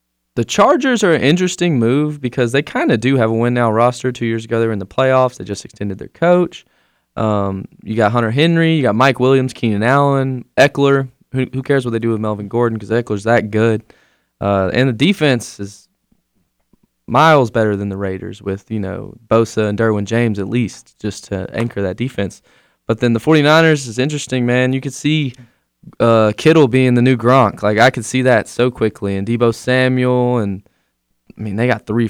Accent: American